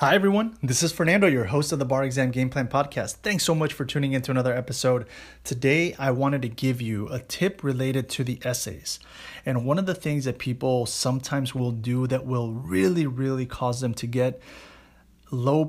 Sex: male